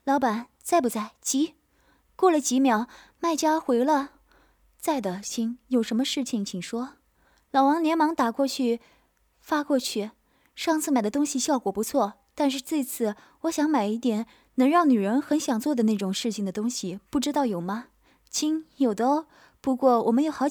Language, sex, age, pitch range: Chinese, female, 20-39, 235-295 Hz